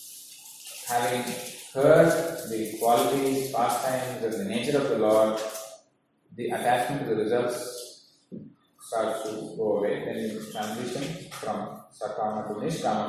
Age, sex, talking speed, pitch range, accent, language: 30-49, male, 125 wpm, 120-150 Hz, Indian, English